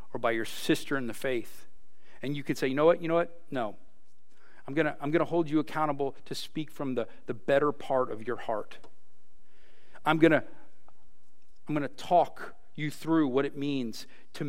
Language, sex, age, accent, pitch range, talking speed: English, male, 40-59, American, 140-175 Hz, 190 wpm